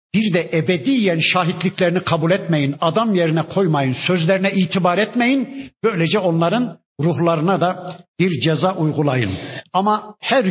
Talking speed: 120 wpm